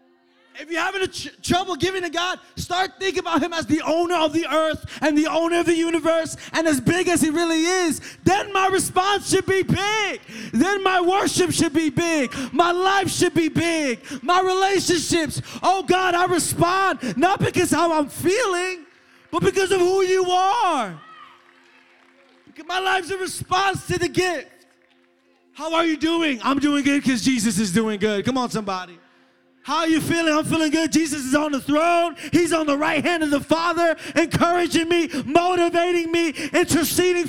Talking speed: 185 wpm